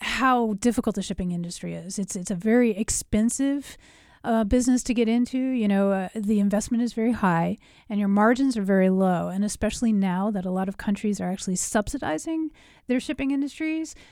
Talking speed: 185 wpm